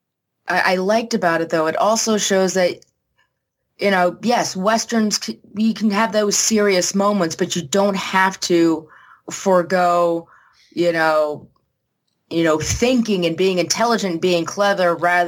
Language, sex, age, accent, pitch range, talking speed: English, female, 20-39, American, 170-220 Hz, 140 wpm